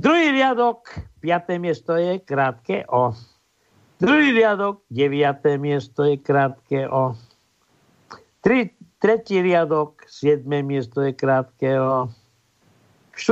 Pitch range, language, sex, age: 125-170 Hz, Slovak, male, 60-79